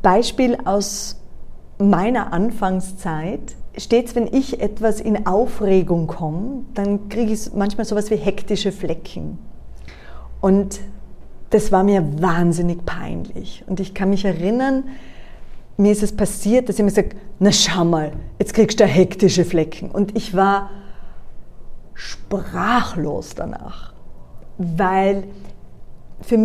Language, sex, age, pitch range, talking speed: German, female, 30-49, 185-220 Hz, 120 wpm